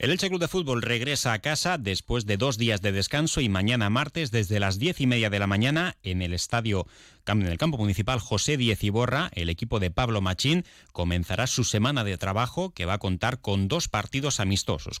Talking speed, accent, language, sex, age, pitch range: 215 wpm, Spanish, Spanish, male, 30-49, 95-135 Hz